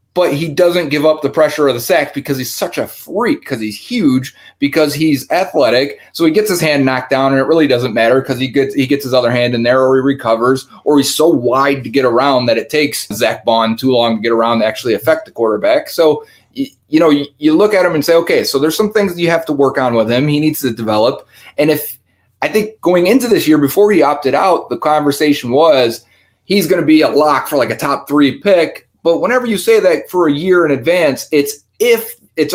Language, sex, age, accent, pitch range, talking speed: English, male, 30-49, American, 125-165 Hz, 250 wpm